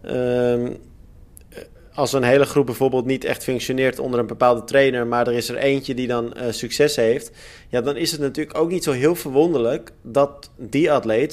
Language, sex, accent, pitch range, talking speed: Dutch, male, Dutch, 115-140 Hz, 190 wpm